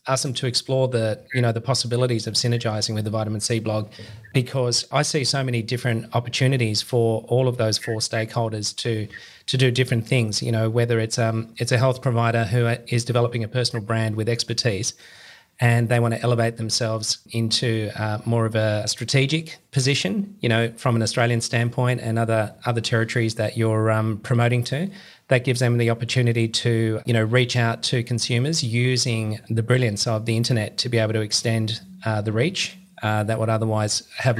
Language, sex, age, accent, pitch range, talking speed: English, male, 30-49, Australian, 110-125 Hz, 195 wpm